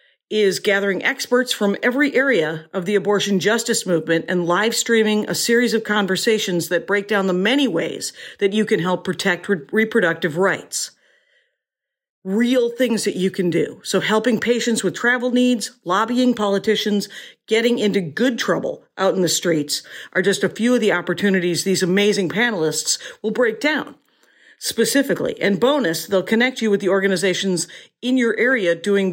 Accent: American